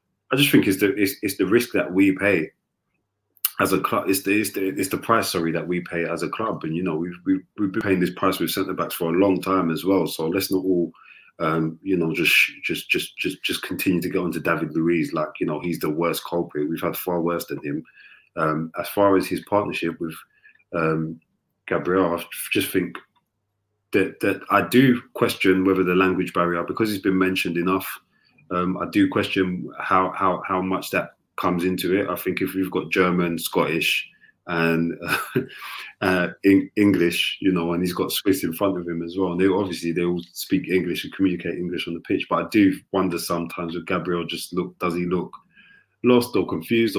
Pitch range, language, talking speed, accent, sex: 85-95 Hz, English, 215 wpm, British, male